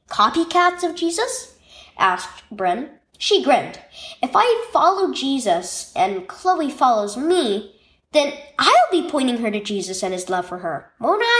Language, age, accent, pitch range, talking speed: English, 10-29, American, 210-355 Hz, 145 wpm